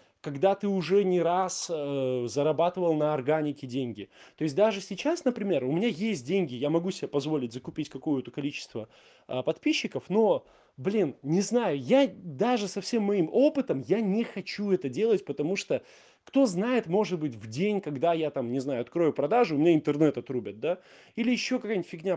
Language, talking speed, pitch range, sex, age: Russian, 180 wpm, 140-195 Hz, male, 20-39